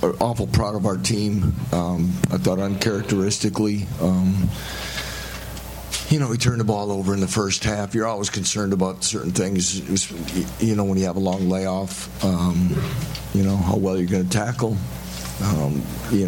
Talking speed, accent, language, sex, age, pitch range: 165 wpm, American, English, male, 50-69, 95-115 Hz